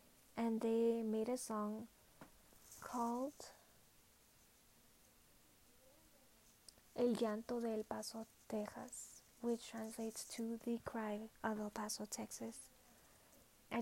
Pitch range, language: 220-245 Hz, English